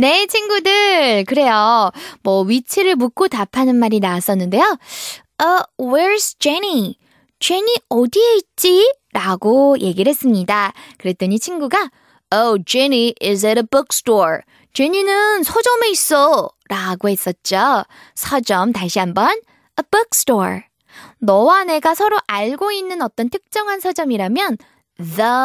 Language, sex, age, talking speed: English, female, 20-39, 105 wpm